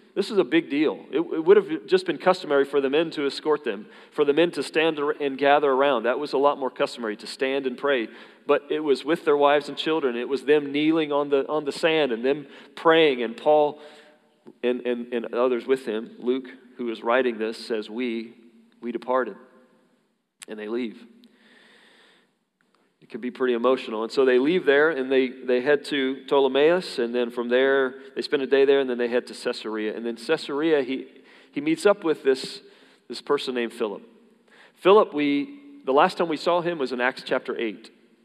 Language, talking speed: English, 205 wpm